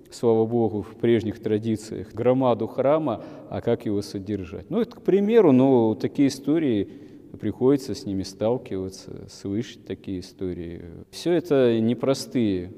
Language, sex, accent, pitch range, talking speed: Russian, male, native, 100-120 Hz, 130 wpm